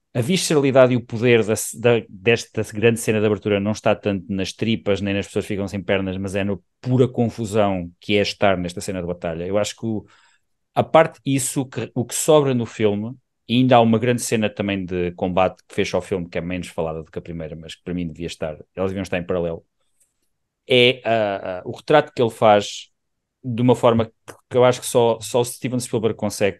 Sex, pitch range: male, 90-115 Hz